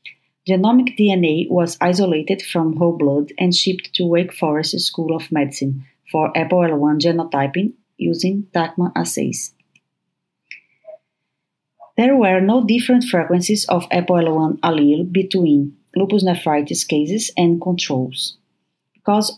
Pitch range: 160-195 Hz